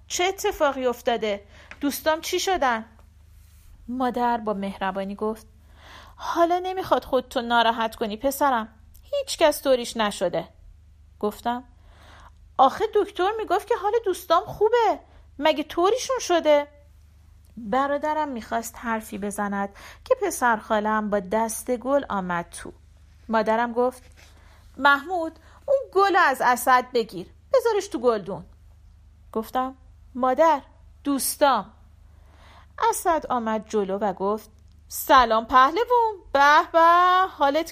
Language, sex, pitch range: Persian, female, 205-310 Hz